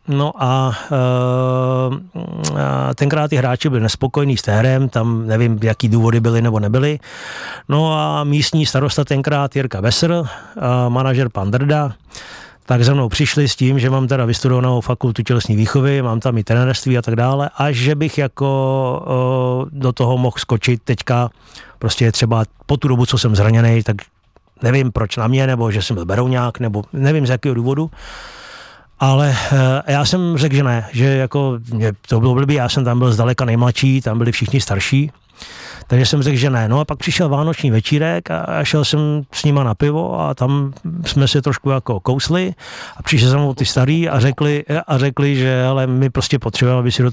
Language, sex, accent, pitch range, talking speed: Czech, male, native, 115-140 Hz, 185 wpm